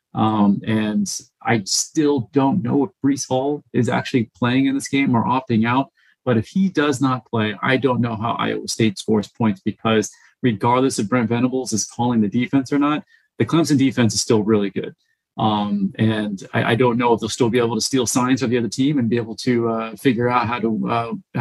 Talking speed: 220 wpm